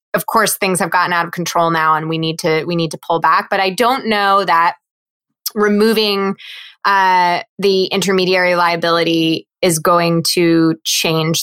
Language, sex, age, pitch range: English, female, 20-39, 170-200 Hz